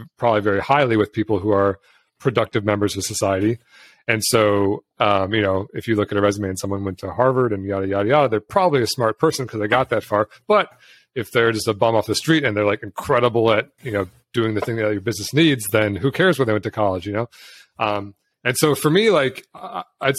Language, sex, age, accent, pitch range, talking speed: English, male, 30-49, American, 100-115 Hz, 240 wpm